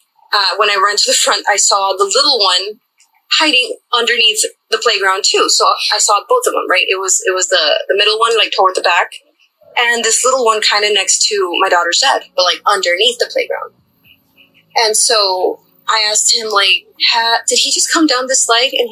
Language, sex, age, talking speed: English, female, 20-39, 215 wpm